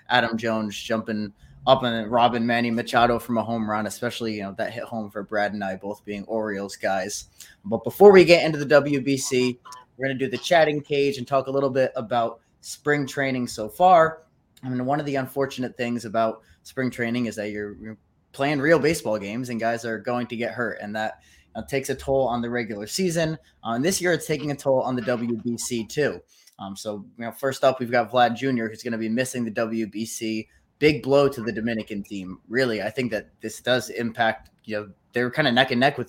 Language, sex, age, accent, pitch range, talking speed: English, male, 20-39, American, 110-135 Hz, 230 wpm